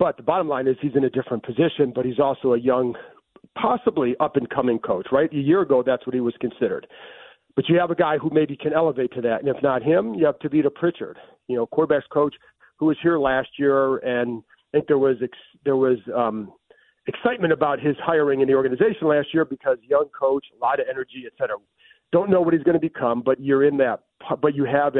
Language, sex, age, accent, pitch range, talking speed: English, male, 40-59, American, 125-160 Hz, 235 wpm